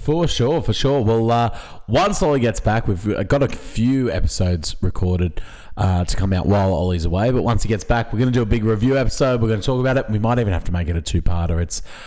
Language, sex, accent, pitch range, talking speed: English, male, Australian, 95-130 Hz, 270 wpm